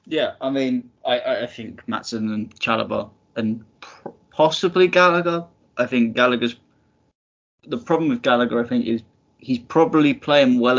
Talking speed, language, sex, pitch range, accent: 145 wpm, English, male, 110-120 Hz, British